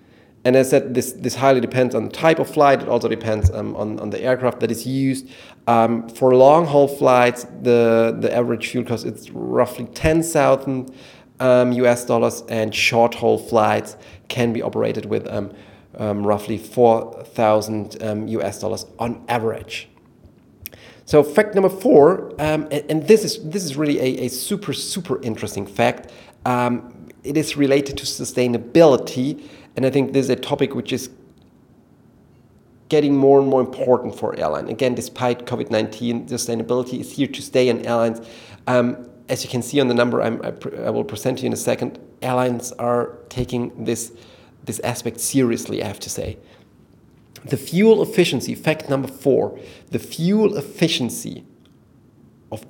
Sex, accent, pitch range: male, German, 115-135 Hz